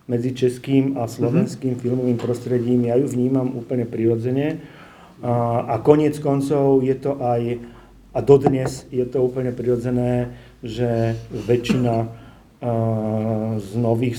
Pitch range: 115-130 Hz